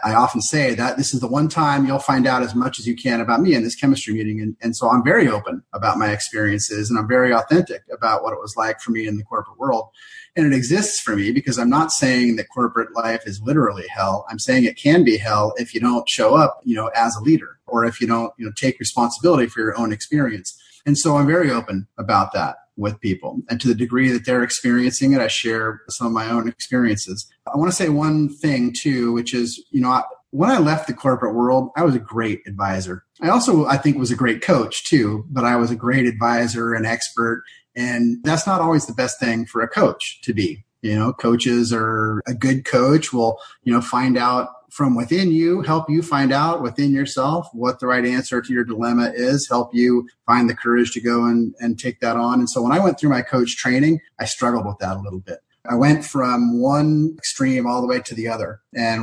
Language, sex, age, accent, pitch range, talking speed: English, male, 30-49, American, 115-135 Hz, 240 wpm